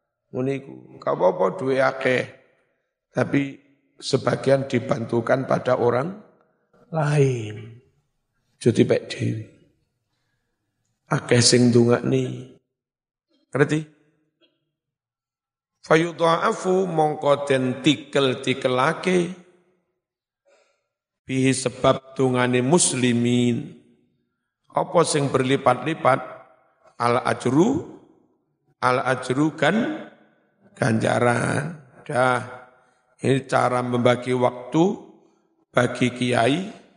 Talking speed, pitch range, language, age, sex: 70 wpm, 125-150 Hz, Indonesian, 50-69, male